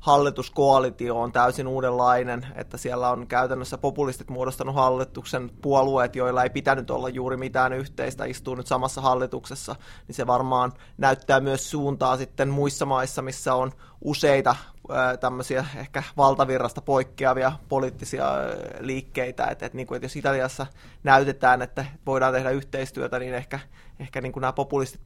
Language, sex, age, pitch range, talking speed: Finnish, male, 20-39, 125-135 Hz, 135 wpm